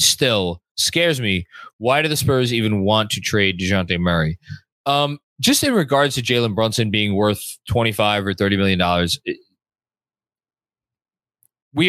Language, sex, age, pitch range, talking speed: English, male, 20-39, 95-125 Hz, 140 wpm